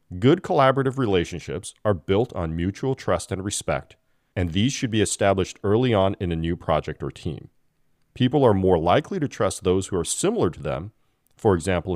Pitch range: 85-110 Hz